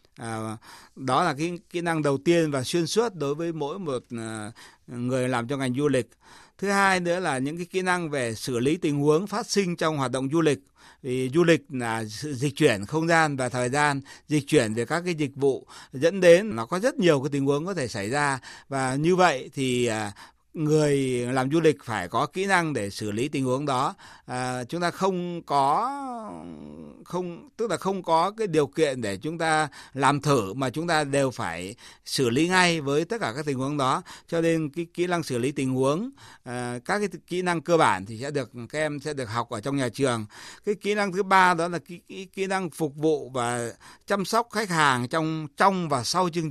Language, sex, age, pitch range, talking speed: Vietnamese, male, 60-79, 130-170 Hz, 225 wpm